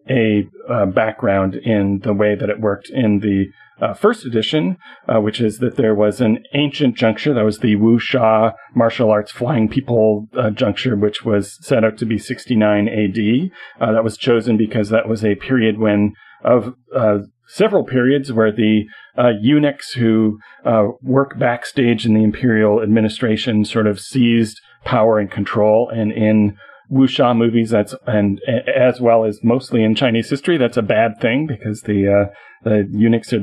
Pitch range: 105-125 Hz